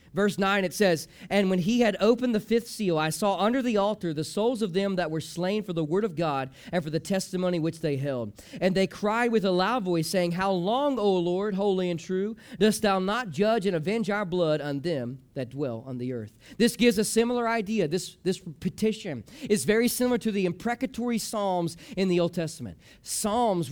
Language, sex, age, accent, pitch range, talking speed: English, male, 40-59, American, 180-235 Hz, 220 wpm